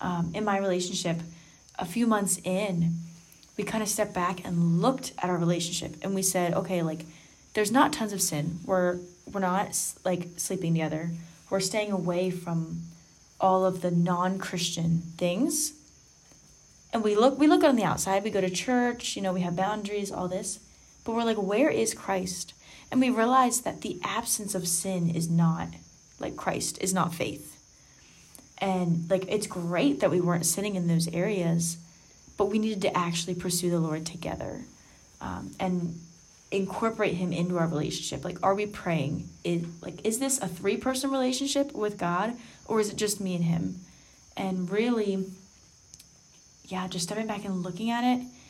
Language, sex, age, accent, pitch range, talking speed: English, female, 10-29, American, 170-210 Hz, 175 wpm